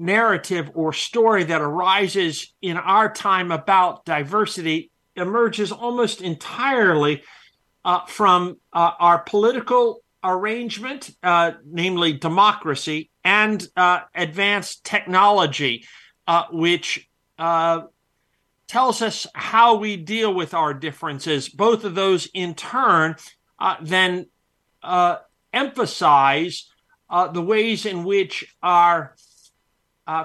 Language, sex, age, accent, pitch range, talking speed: English, male, 50-69, American, 175-220 Hz, 105 wpm